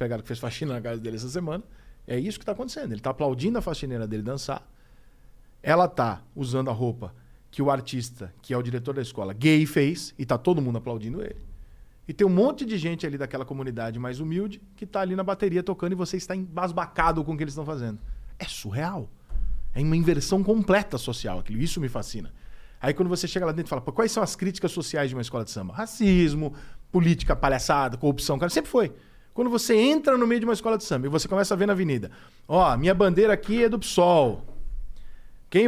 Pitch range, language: 120-180 Hz, Portuguese